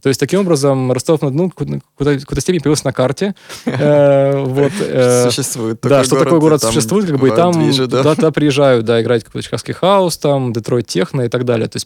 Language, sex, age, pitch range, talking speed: Russian, male, 20-39, 125-150 Hz, 185 wpm